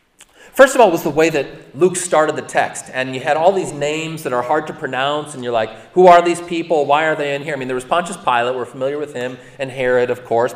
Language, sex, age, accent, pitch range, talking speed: English, male, 40-59, American, 140-185 Hz, 275 wpm